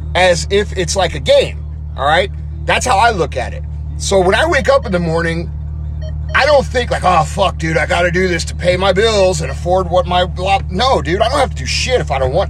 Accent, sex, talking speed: American, male, 265 wpm